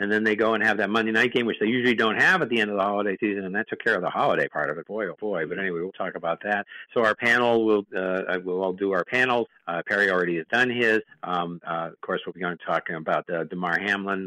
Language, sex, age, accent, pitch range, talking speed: English, male, 50-69, American, 100-120 Hz, 290 wpm